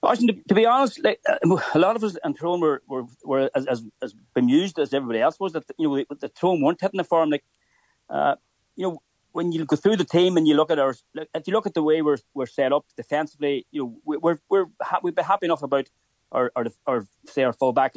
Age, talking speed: 30-49, 235 wpm